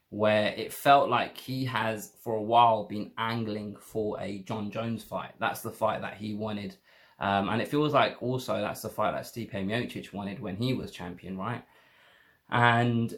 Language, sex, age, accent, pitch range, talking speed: English, male, 20-39, British, 105-125 Hz, 185 wpm